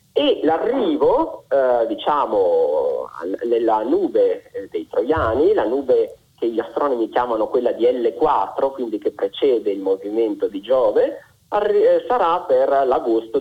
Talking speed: 125 wpm